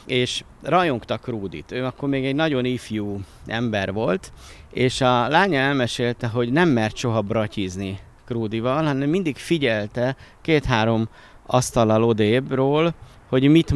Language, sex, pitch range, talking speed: Hungarian, male, 110-135 Hz, 125 wpm